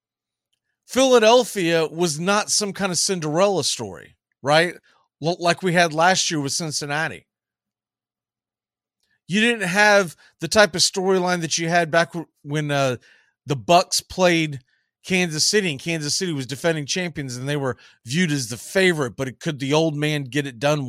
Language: English